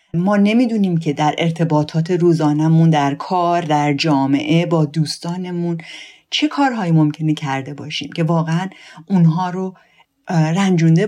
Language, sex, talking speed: Persian, female, 120 wpm